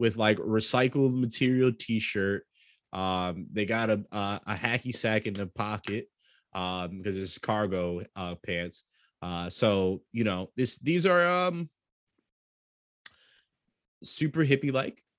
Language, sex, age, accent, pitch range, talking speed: Finnish, male, 20-39, American, 95-115 Hz, 130 wpm